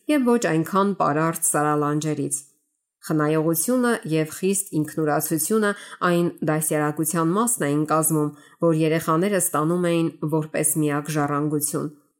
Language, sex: English, female